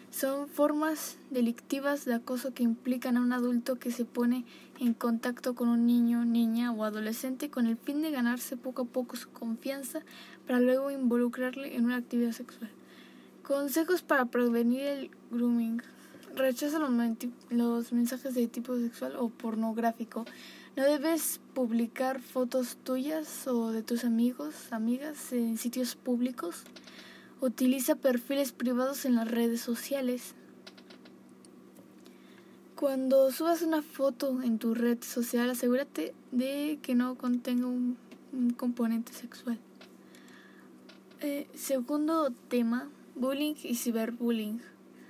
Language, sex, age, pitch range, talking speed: Spanish, female, 10-29, 235-270 Hz, 130 wpm